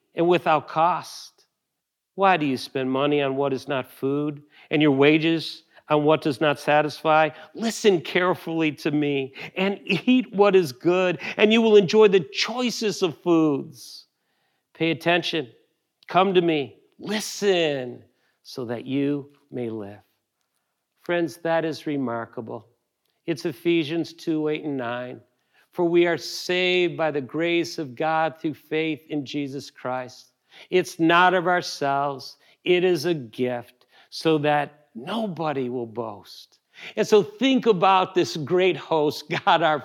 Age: 50-69